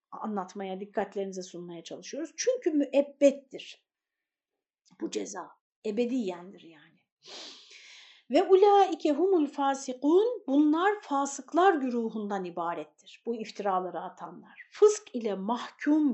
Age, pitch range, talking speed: 60-79, 210-300 Hz, 90 wpm